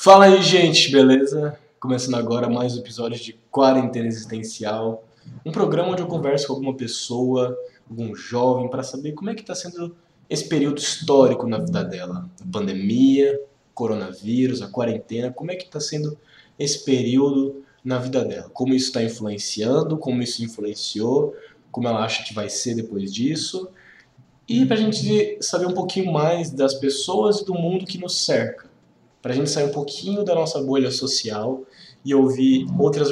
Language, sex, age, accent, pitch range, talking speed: Portuguese, male, 20-39, Brazilian, 120-165 Hz, 170 wpm